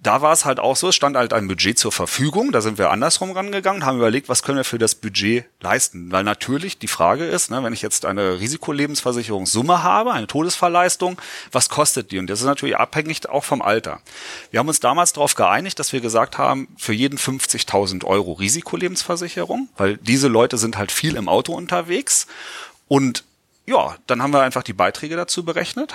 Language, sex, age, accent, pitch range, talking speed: German, male, 30-49, German, 110-160 Hz, 200 wpm